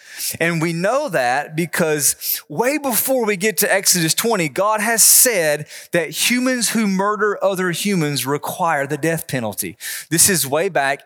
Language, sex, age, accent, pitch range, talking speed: English, male, 30-49, American, 145-195 Hz, 155 wpm